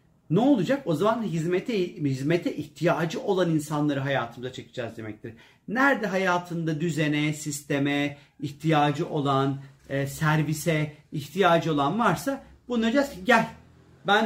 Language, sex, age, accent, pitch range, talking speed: Turkish, male, 40-59, native, 140-195 Hz, 105 wpm